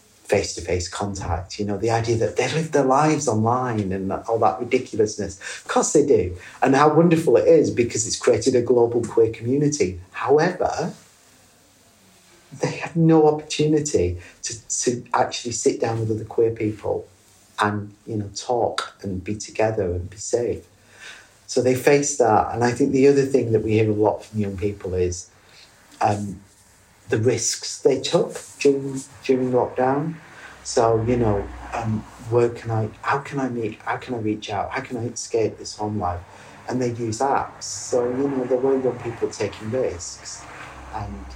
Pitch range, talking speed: 105-135 Hz, 175 wpm